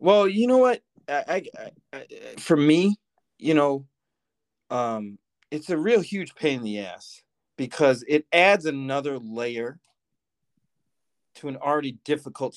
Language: English